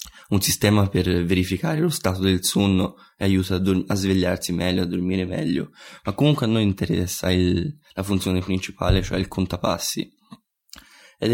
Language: Italian